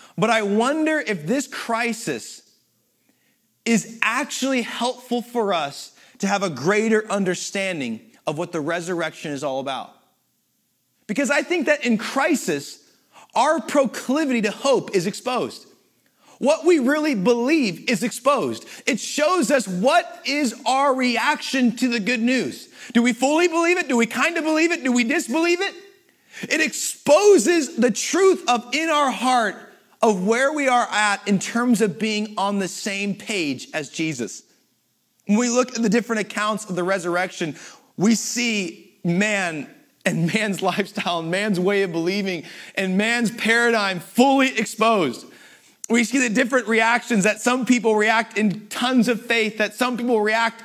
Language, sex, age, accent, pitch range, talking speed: English, male, 30-49, American, 205-260 Hz, 160 wpm